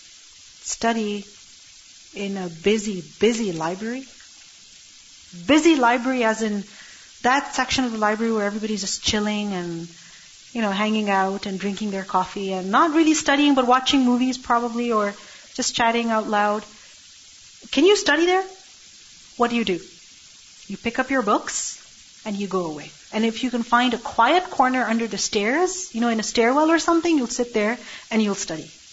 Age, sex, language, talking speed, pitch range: 40-59, female, English, 170 wpm, 215-280 Hz